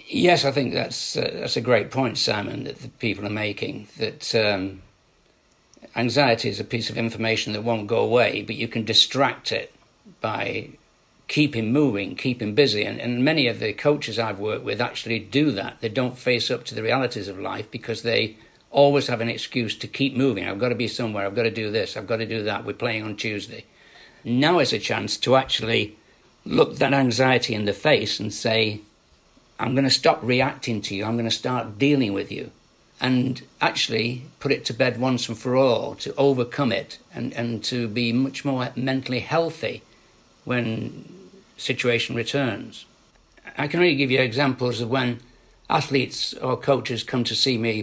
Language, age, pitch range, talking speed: English, 60-79, 110-130 Hz, 190 wpm